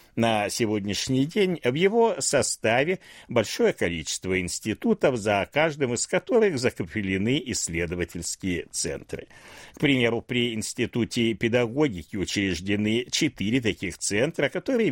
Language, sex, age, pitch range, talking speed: Russian, male, 60-79, 95-140 Hz, 105 wpm